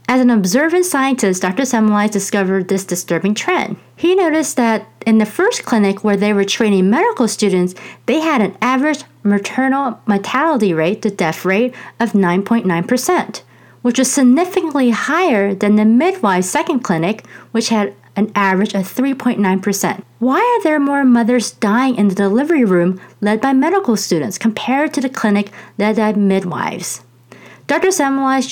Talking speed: 155 wpm